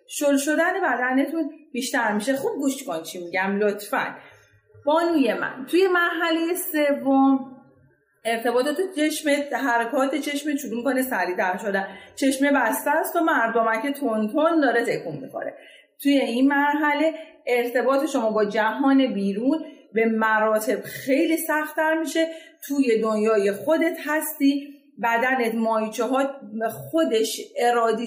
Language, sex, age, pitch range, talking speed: Persian, female, 40-59, 215-285 Hz, 125 wpm